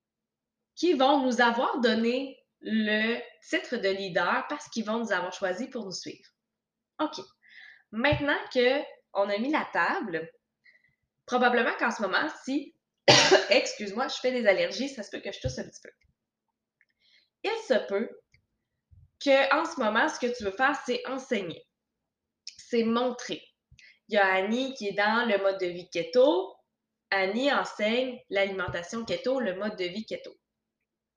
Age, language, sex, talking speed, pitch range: 20-39, French, female, 155 wpm, 195-260 Hz